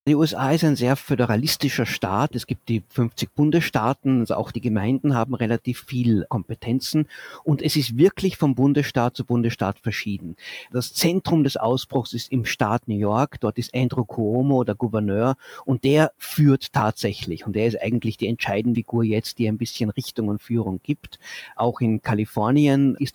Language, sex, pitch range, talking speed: German, male, 110-130 Hz, 175 wpm